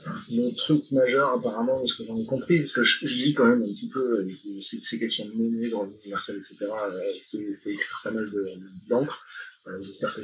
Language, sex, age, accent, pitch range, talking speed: French, male, 40-59, French, 100-140 Hz, 225 wpm